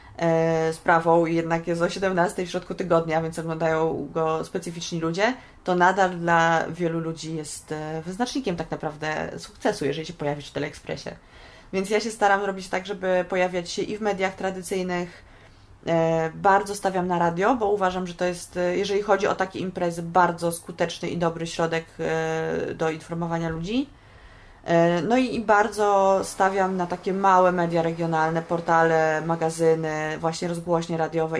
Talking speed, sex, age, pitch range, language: 150 wpm, female, 20-39, 160-185 Hz, Polish